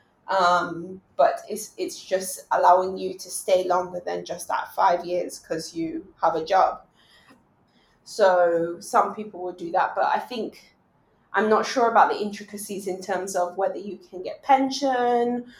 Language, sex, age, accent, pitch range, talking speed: English, female, 20-39, British, 180-215 Hz, 165 wpm